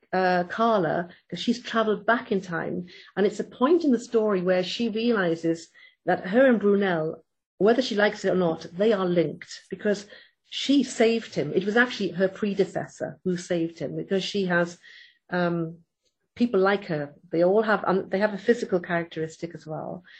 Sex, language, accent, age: female, English, British, 50-69